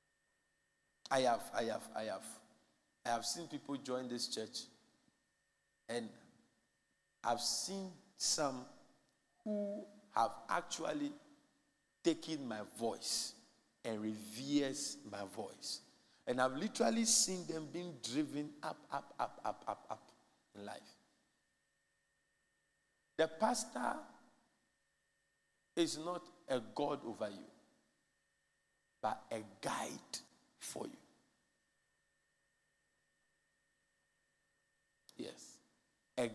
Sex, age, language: male, 50-69, English